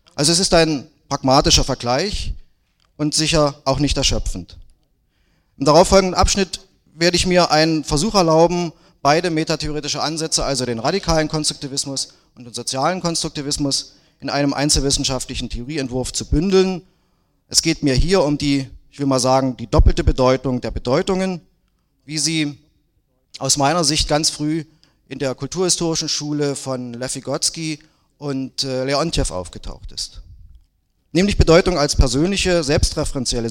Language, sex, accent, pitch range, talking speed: German, male, German, 120-155 Hz, 135 wpm